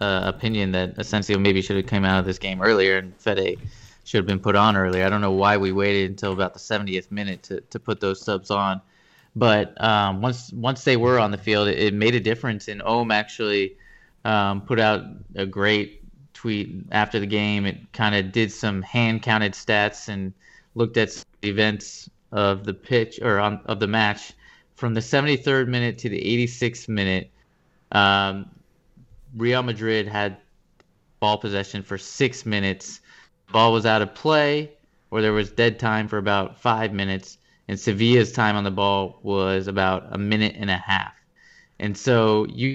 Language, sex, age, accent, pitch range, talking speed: English, male, 20-39, American, 100-115 Hz, 185 wpm